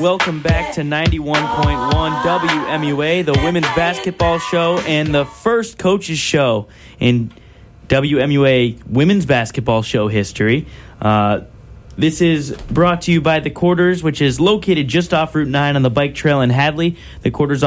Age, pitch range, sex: 20-39, 130-160 Hz, male